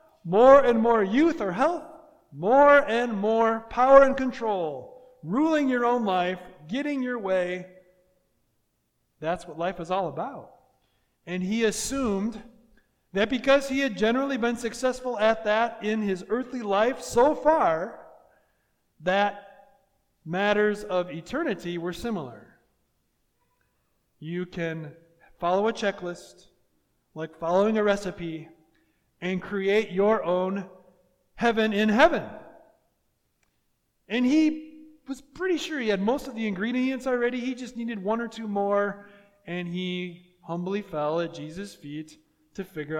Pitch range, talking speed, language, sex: 180-260 Hz, 130 wpm, English, male